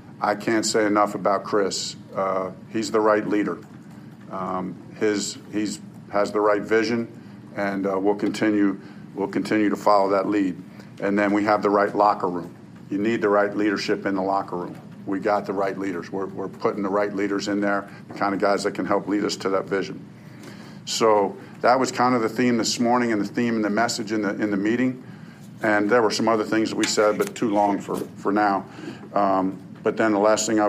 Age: 50-69